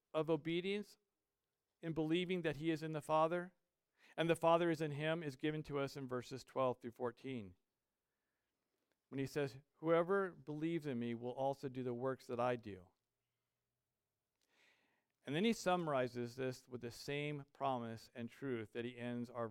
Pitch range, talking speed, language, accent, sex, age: 125-170 Hz, 170 wpm, English, American, male, 50-69